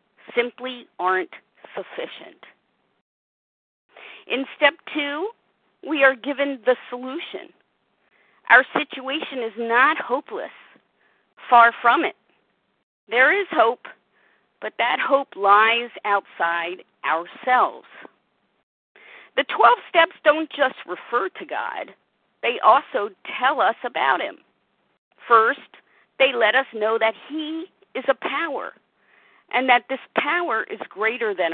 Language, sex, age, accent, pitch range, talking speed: English, female, 50-69, American, 220-285 Hz, 110 wpm